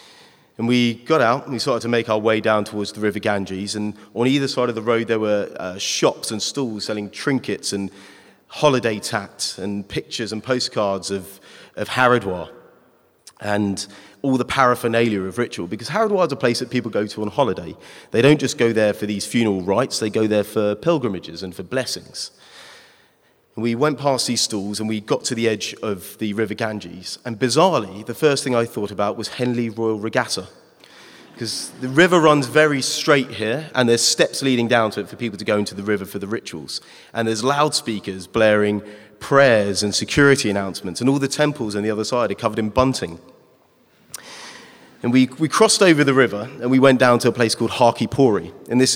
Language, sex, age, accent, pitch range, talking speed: English, male, 30-49, British, 105-125 Hz, 200 wpm